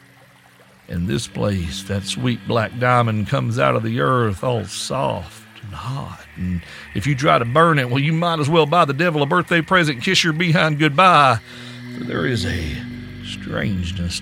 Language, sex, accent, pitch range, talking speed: English, male, American, 85-120 Hz, 180 wpm